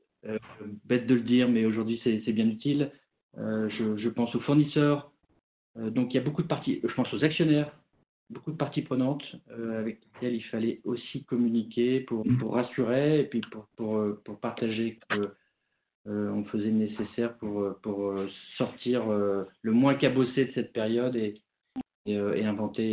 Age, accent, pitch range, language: 40-59, French, 110-135 Hz, French